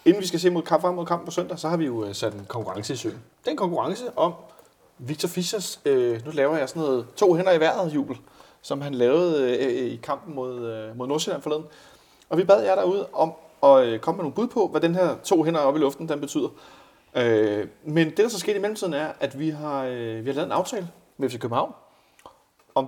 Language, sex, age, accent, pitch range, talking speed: Danish, male, 30-49, native, 130-180 Hz, 240 wpm